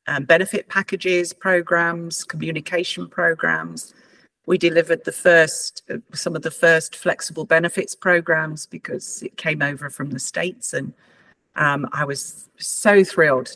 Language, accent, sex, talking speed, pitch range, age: English, British, female, 135 wpm, 140-175 Hz, 50-69